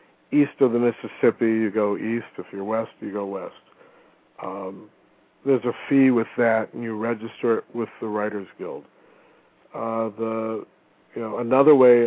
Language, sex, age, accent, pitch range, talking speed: English, male, 50-69, American, 110-120 Hz, 165 wpm